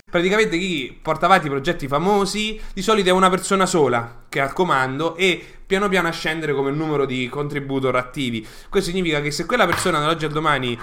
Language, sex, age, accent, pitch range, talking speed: English, male, 20-39, Italian, 140-180 Hz, 195 wpm